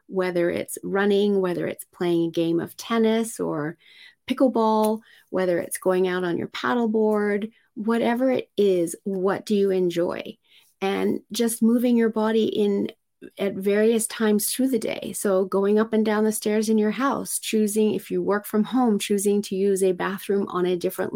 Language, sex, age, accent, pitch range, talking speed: English, female, 30-49, American, 180-215 Hz, 175 wpm